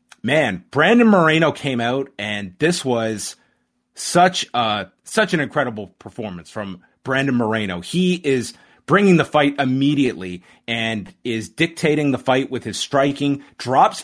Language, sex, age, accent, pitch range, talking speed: English, male, 30-49, American, 115-155 Hz, 135 wpm